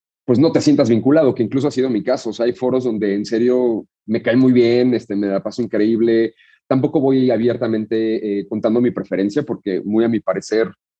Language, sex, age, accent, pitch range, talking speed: Spanish, male, 40-59, Mexican, 110-125 Hz, 215 wpm